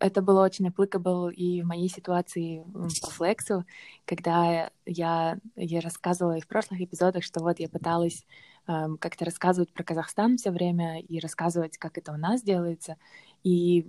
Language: Russian